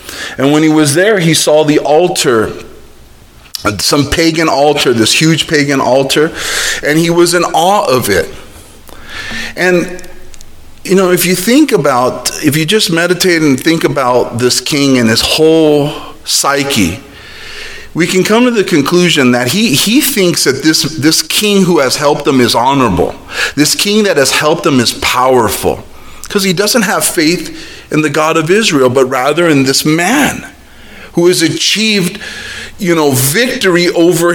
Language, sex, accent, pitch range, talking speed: English, male, American, 125-180 Hz, 160 wpm